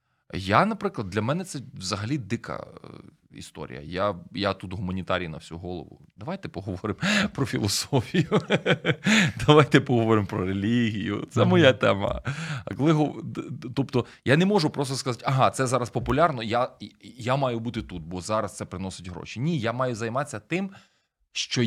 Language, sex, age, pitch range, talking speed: Ukrainian, male, 20-39, 100-130 Hz, 145 wpm